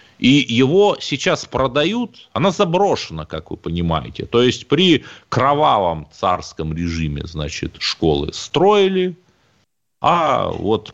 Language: Russian